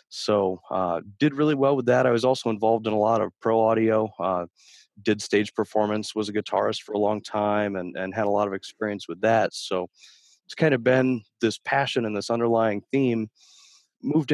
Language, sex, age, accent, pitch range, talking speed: English, male, 30-49, American, 100-120 Hz, 210 wpm